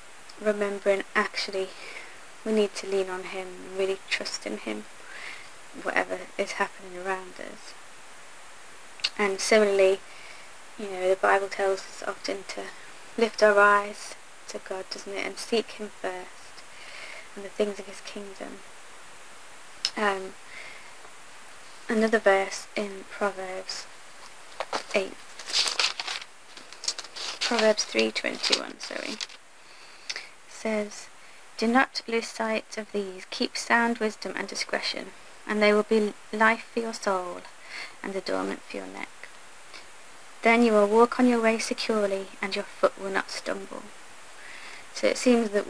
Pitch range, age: 190-220 Hz, 20-39